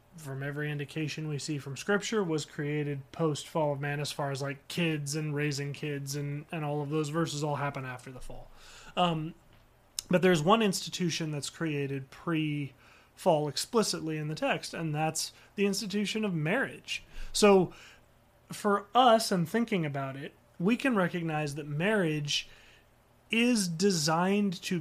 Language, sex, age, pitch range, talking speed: English, male, 30-49, 145-180 Hz, 160 wpm